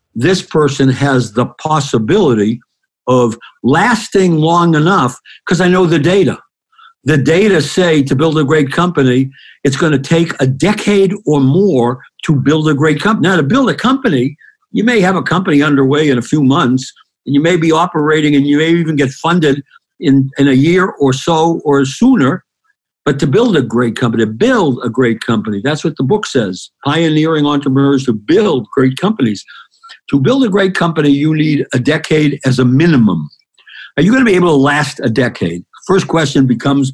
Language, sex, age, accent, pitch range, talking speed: English, male, 60-79, American, 135-175 Hz, 190 wpm